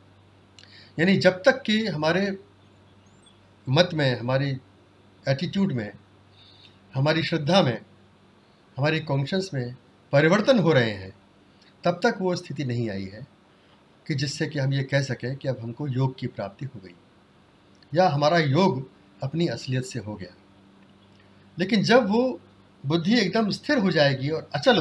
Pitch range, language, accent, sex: 100-155 Hz, Hindi, native, male